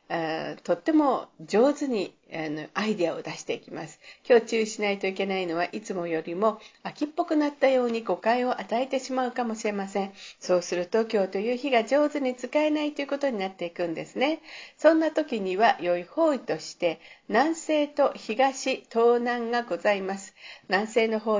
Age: 50-69